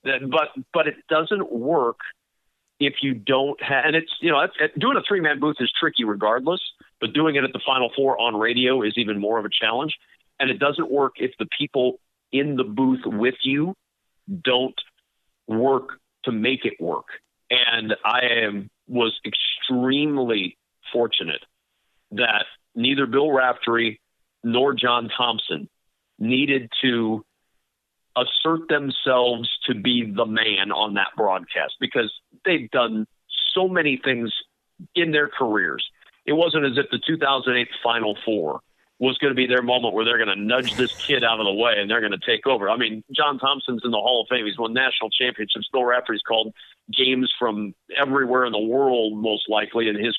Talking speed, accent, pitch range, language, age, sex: 175 wpm, American, 115-140 Hz, English, 50-69, male